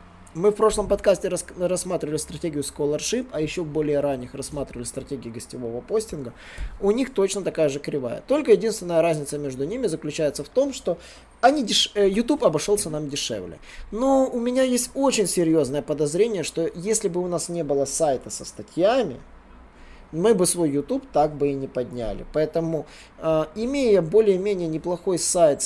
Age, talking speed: 20-39, 150 wpm